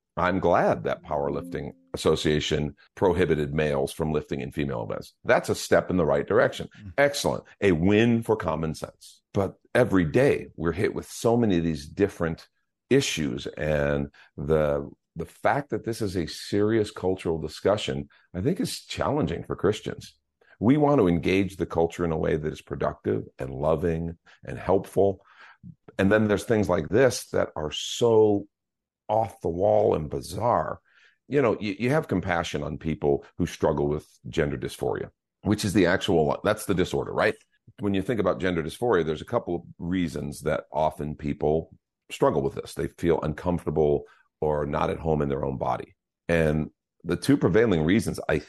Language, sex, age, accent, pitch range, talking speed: English, male, 50-69, American, 75-100 Hz, 170 wpm